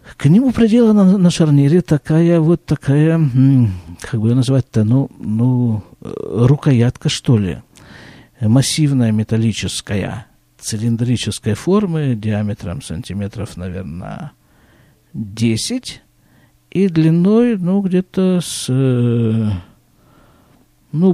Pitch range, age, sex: 115-165 Hz, 50-69, male